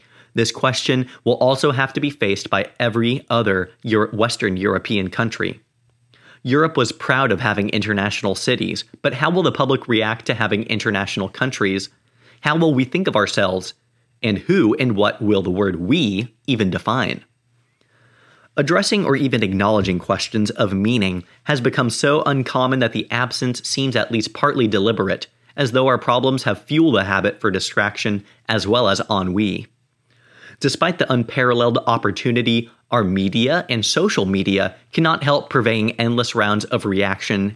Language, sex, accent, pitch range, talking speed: English, male, American, 105-130 Hz, 155 wpm